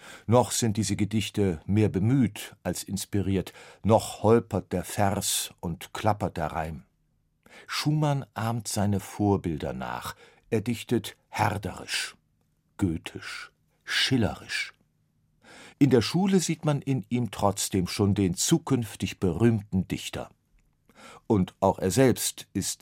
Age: 50-69